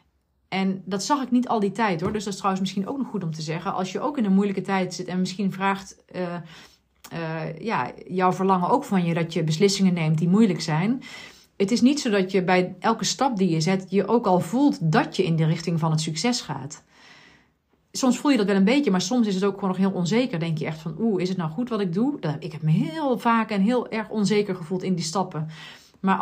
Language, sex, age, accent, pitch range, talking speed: Dutch, female, 40-59, Dutch, 180-230 Hz, 255 wpm